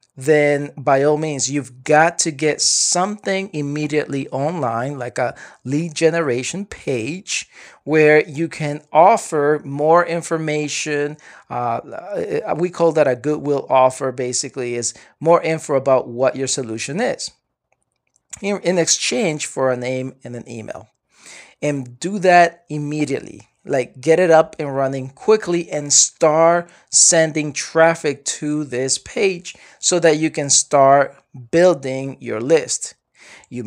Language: English